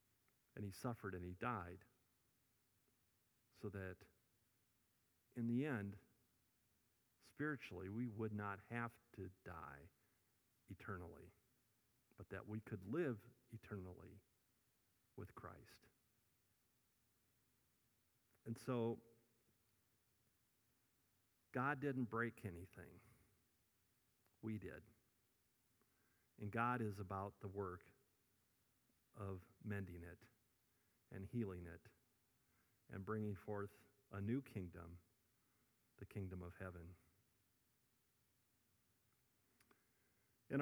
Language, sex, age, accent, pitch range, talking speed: English, male, 50-69, American, 100-125 Hz, 85 wpm